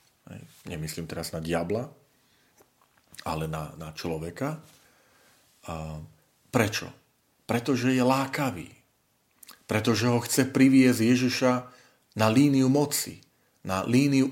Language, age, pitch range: Slovak, 40-59, 100-130 Hz